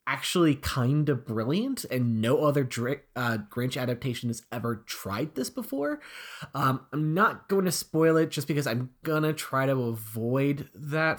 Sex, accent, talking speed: male, American, 165 wpm